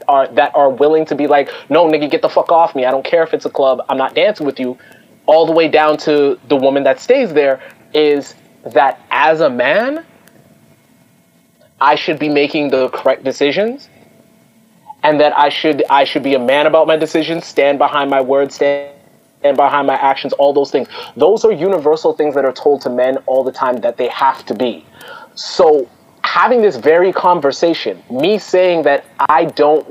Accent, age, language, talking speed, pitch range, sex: American, 30-49, English, 195 wpm, 140-175 Hz, male